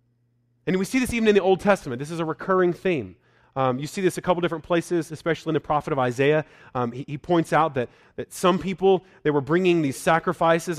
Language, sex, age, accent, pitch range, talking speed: English, male, 30-49, American, 120-175 Hz, 235 wpm